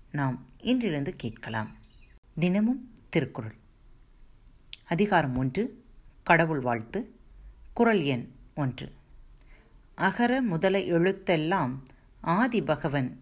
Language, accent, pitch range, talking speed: Tamil, native, 135-190 Hz, 75 wpm